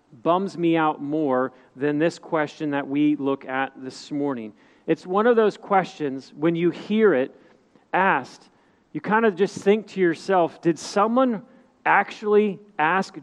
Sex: male